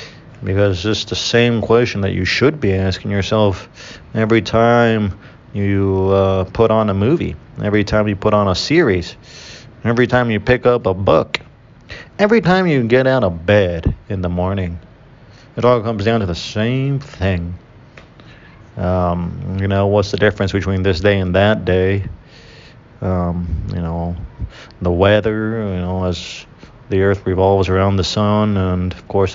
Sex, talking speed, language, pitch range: male, 165 wpm, English, 95-115 Hz